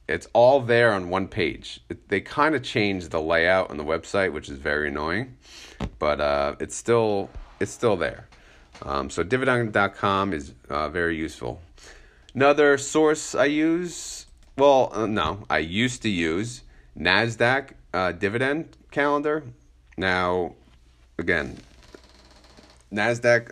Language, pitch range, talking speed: English, 80-115 Hz, 130 wpm